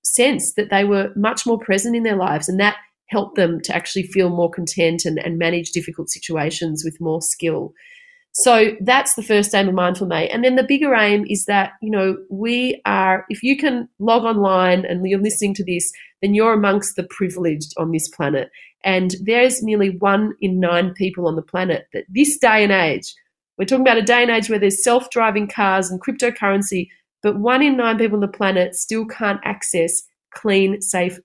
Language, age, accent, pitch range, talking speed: English, 30-49, Australian, 180-220 Hz, 200 wpm